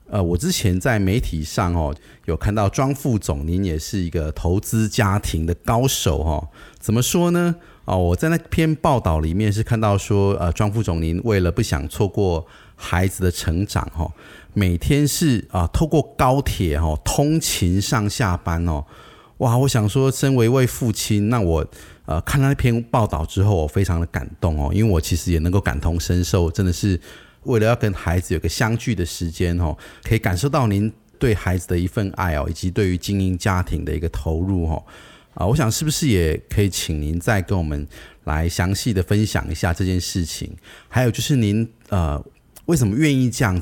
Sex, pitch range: male, 85-115 Hz